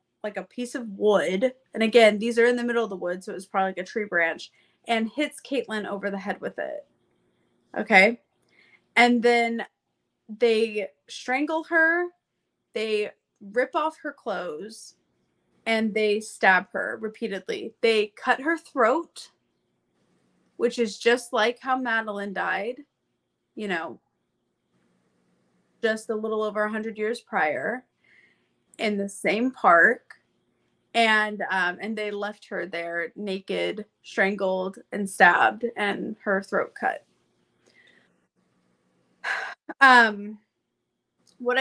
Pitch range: 200-240 Hz